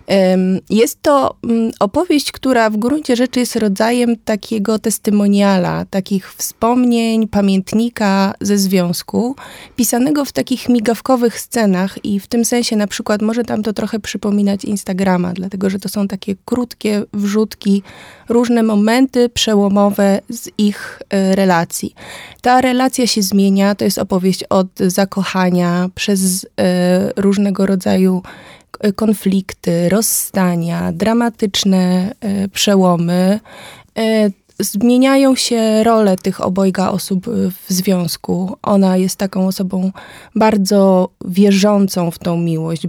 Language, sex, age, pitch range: Polish, female, 20-39, 185-220 Hz